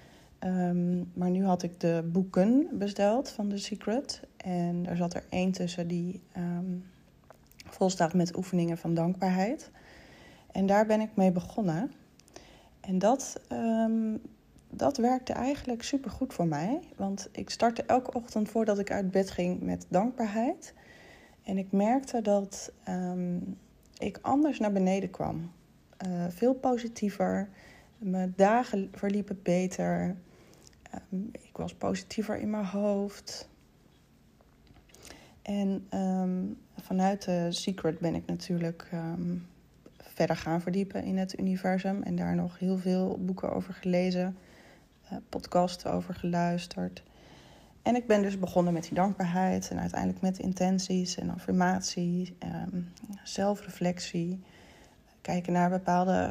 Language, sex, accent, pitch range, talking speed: Dutch, female, Dutch, 175-205 Hz, 125 wpm